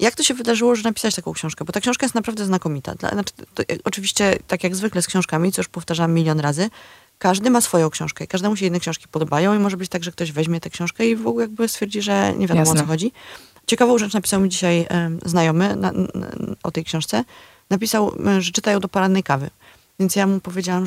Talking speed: 215 wpm